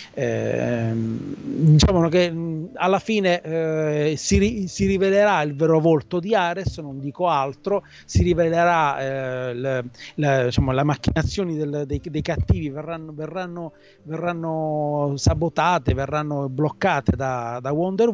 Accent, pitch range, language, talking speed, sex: native, 135-170 Hz, Italian, 125 wpm, male